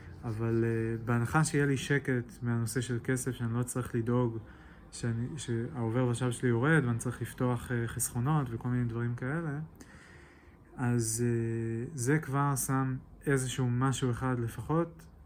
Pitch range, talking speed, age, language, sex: 115-130 Hz, 140 wpm, 20-39, English, male